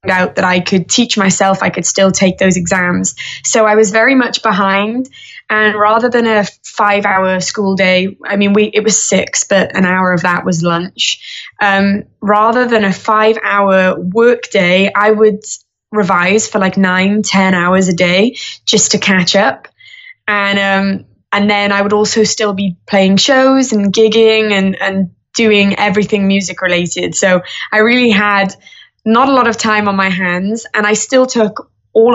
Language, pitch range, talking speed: English, 190-215 Hz, 175 wpm